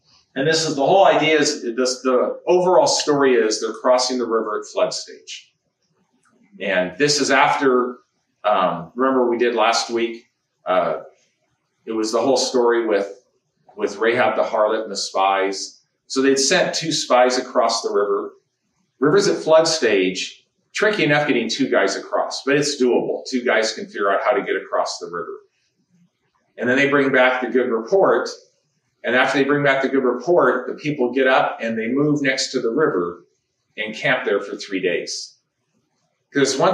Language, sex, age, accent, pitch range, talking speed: English, male, 40-59, American, 125-175 Hz, 180 wpm